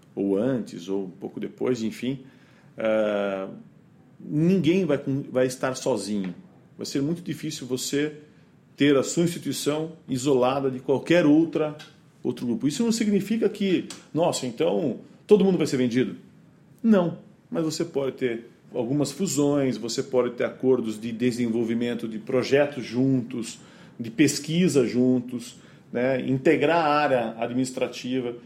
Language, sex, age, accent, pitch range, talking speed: Portuguese, male, 40-59, Brazilian, 120-150 Hz, 130 wpm